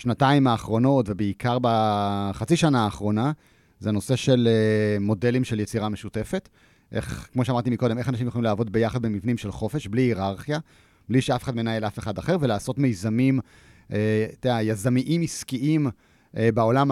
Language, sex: Hebrew, male